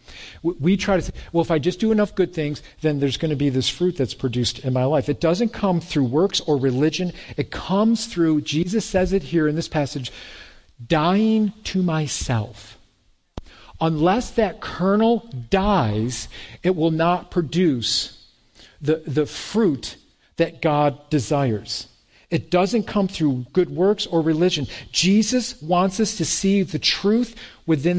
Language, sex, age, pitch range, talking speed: English, male, 50-69, 150-205 Hz, 160 wpm